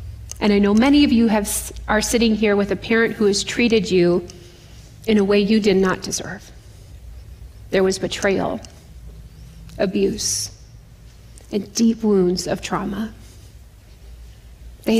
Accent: American